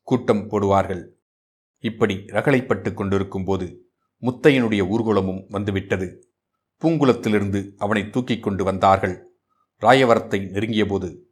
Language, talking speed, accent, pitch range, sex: Tamil, 85 wpm, native, 100-115 Hz, male